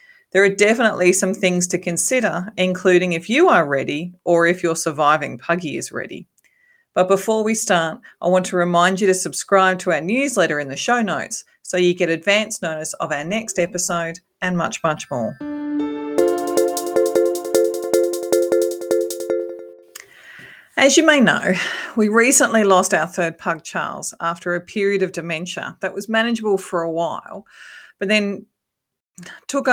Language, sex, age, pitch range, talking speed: English, female, 40-59, 165-215 Hz, 150 wpm